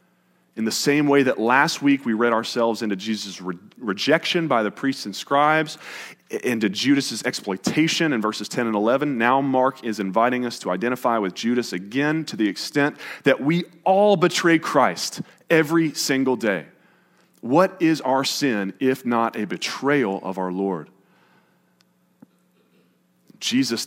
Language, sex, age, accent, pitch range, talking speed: English, male, 30-49, American, 110-150 Hz, 150 wpm